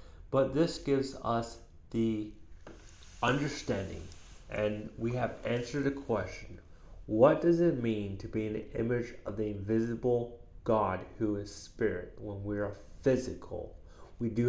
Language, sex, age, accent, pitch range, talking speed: English, male, 30-49, American, 85-115 Hz, 140 wpm